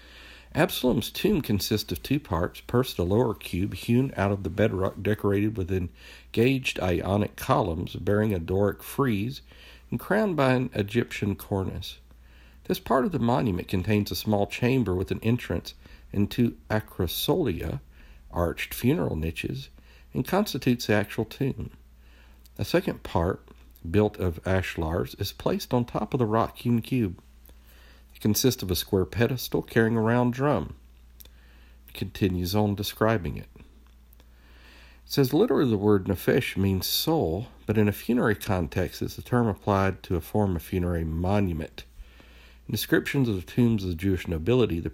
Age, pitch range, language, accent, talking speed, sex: 50-69, 75-110 Hz, English, American, 150 wpm, male